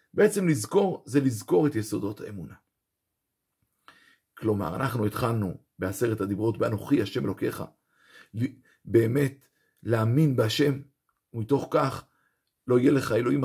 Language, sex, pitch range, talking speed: Hebrew, male, 115-150 Hz, 105 wpm